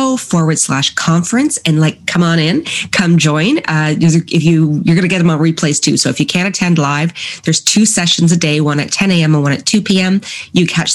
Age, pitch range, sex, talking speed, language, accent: 30-49, 150-185 Hz, female, 235 wpm, English, American